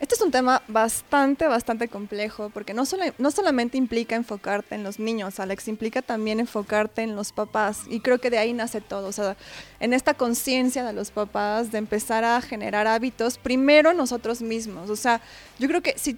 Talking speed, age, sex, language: 195 wpm, 20-39, female, Spanish